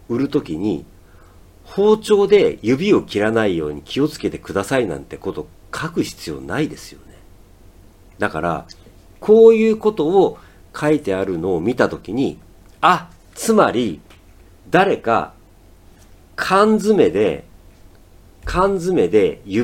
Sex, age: male, 40-59